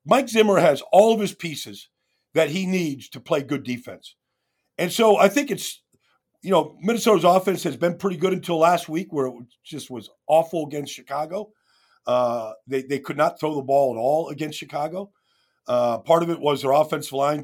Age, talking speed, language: 50-69, 195 wpm, English